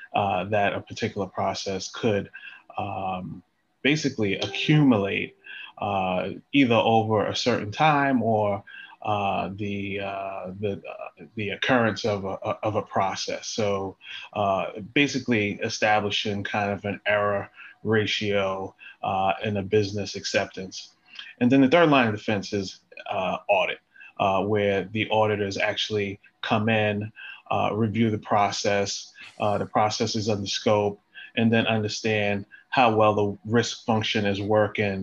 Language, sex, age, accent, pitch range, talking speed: English, male, 30-49, American, 100-110 Hz, 135 wpm